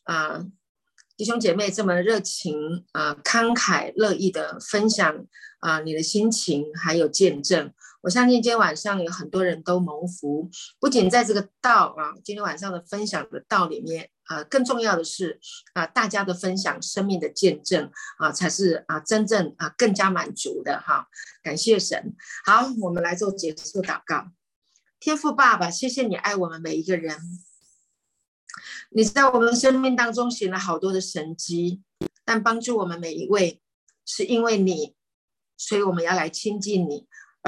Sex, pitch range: female, 175-225 Hz